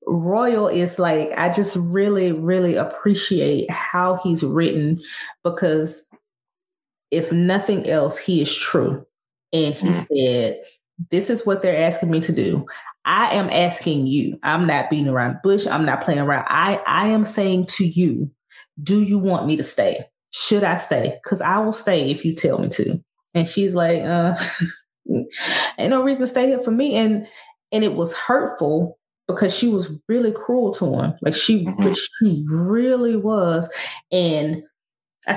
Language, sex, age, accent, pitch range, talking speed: English, female, 30-49, American, 165-215 Hz, 165 wpm